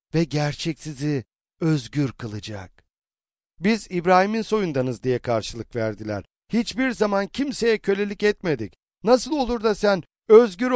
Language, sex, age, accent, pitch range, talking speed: Turkish, male, 50-69, native, 135-195 Hz, 115 wpm